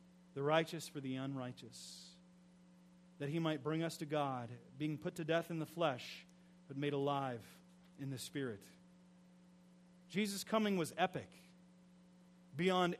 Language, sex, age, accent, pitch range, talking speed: English, male, 30-49, American, 160-185 Hz, 140 wpm